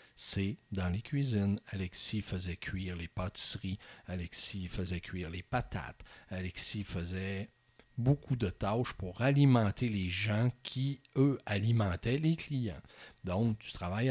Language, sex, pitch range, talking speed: French, male, 95-125 Hz, 130 wpm